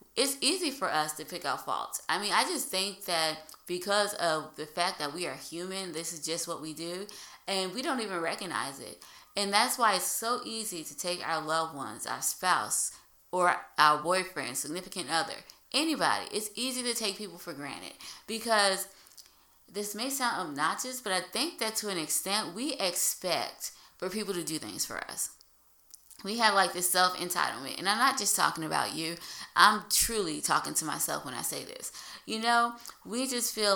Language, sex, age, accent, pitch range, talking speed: English, female, 20-39, American, 160-215 Hz, 190 wpm